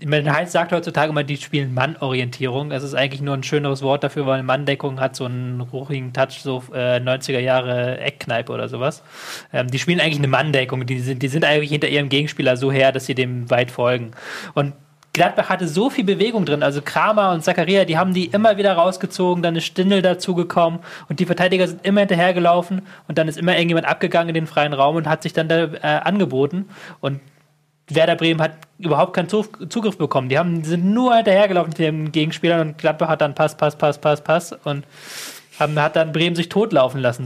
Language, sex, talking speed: German, male, 205 wpm